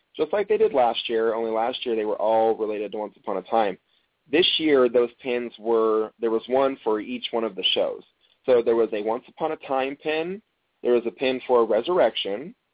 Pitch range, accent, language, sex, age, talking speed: 115-135 Hz, American, English, male, 20-39, 220 wpm